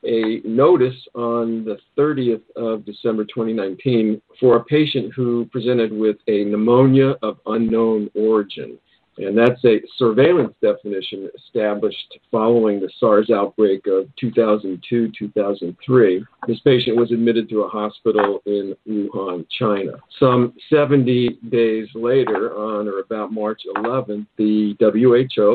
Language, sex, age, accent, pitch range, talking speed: English, male, 50-69, American, 105-120 Hz, 125 wpm